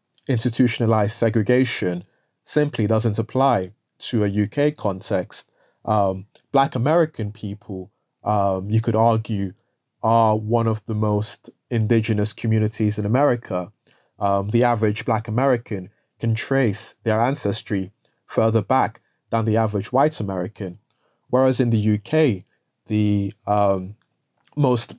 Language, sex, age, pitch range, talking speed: English, male, 20-39, 105-120 Hz, 120 wpm